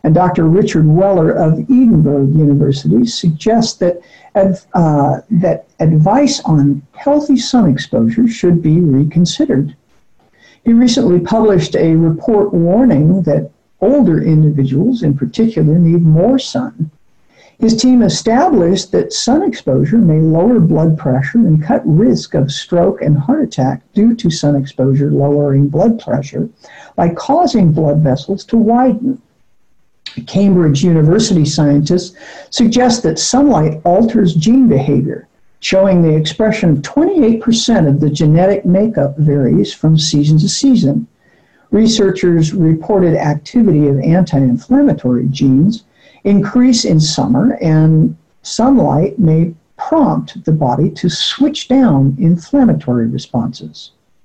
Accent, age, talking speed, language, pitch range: American, 60-79, 120 wpm, English, 150-225 Hz